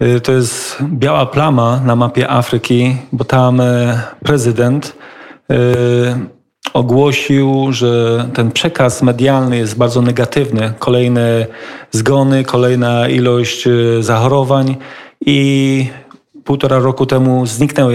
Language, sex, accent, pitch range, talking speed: Polish, male, native, 120-135 Hz, 95 wpm